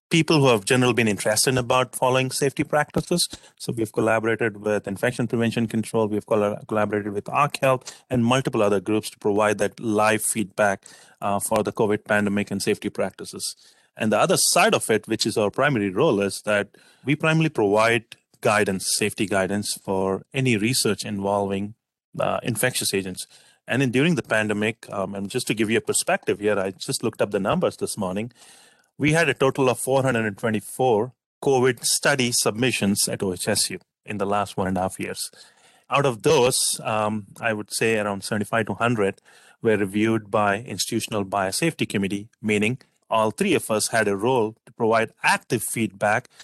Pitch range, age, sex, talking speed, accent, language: 105-130 Hz, 30-49, male, 175 wpm, Indian, English